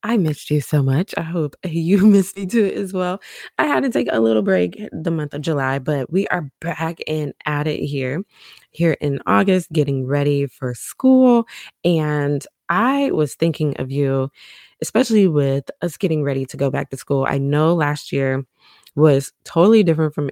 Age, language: 20-39, English